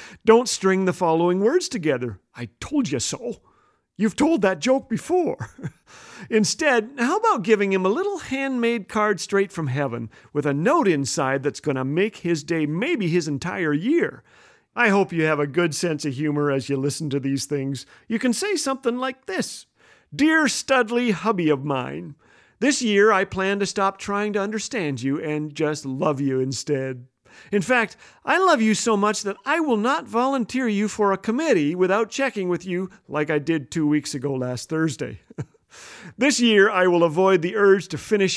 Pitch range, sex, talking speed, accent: 155-235 Hz, male, 185 wpm, American